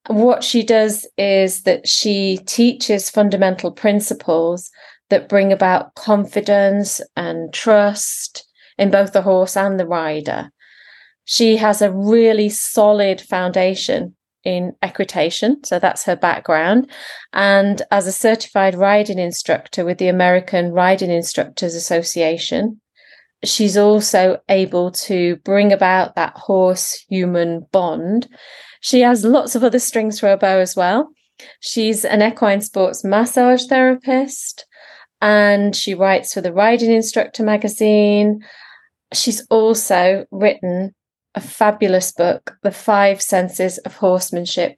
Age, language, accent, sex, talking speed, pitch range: 30-49, English, British, female, 120 wpm, 185-220 Hz